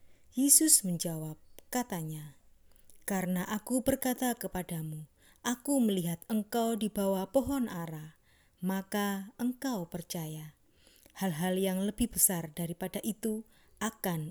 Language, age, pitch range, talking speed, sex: Indonesian, 20-39, 170-215 Hz, 100 wpm, female